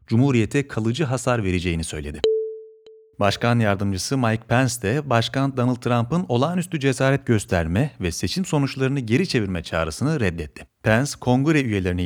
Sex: male